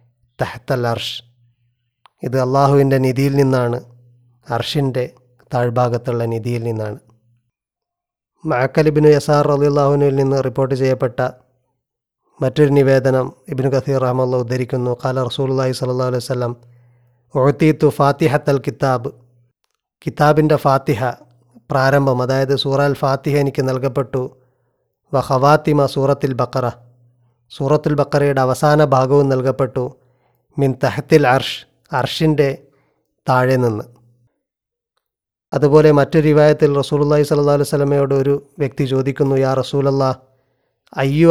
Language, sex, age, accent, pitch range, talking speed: Malayalam, male, 30-49, native, 125-140 Hz, 100 wpm